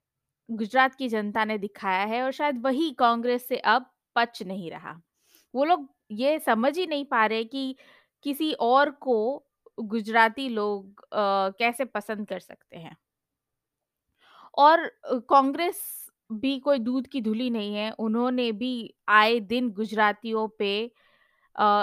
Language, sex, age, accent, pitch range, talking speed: Hindi, female, 20-39, native, 215-265 Hz, 140 wpm